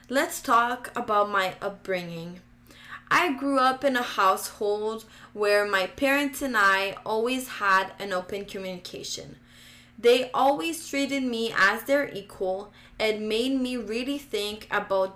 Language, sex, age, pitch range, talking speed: English, female, 20-39, 190-245 Hz, 135 wpm